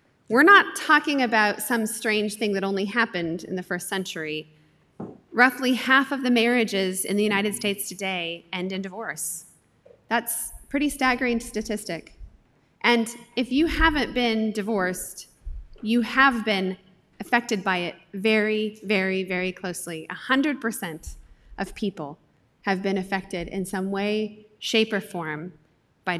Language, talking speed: English, 140 wpm